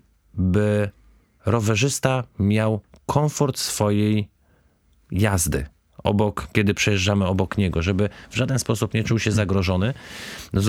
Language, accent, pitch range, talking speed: Polish, native, 90-110 Hz, 105 wpm